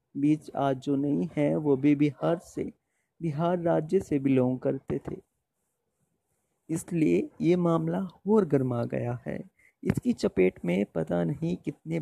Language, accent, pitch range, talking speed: Hindi, native, 140-180 Hz, 140 wpm